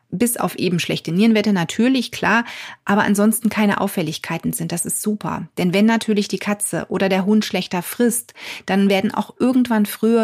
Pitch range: 185-220 Hz